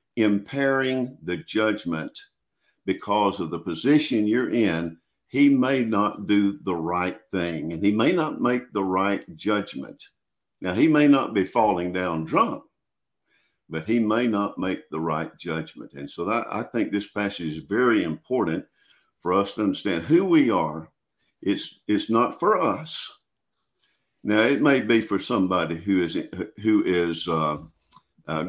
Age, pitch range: 50-69, 85-125 Hz